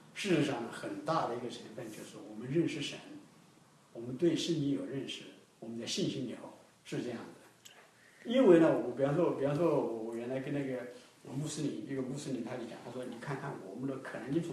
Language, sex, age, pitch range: English, male, 50-69, 135-195 Hz